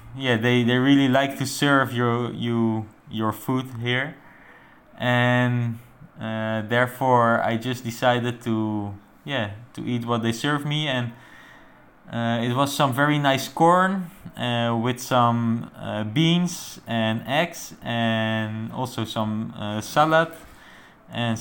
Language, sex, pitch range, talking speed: English, male, 120-155 Hz, 130 wpm